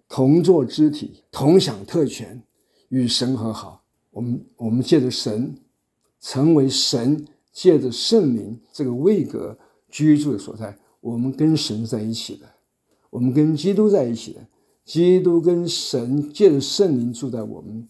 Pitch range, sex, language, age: 115-150 Hz, male, Chinese, 50-69